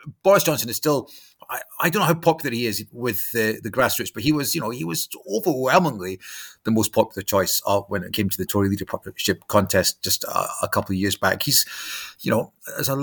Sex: male